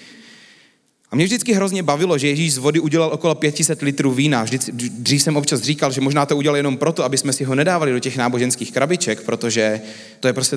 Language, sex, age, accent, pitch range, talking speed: Czech, male, 30-49, native, 130-170 Hz, 215 wpm